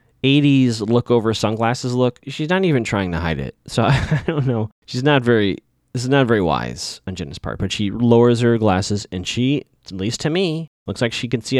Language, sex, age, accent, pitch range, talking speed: English, male, 30-49, American, 105-135 Hz, 230 wpm